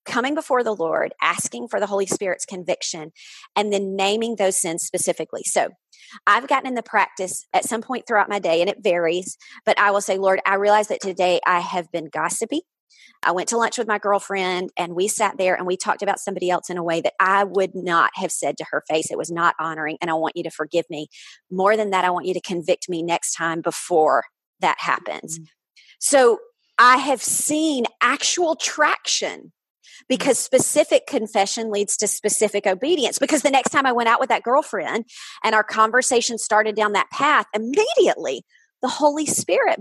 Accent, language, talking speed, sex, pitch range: American, English, 200 wpm, female, 180-240 Hz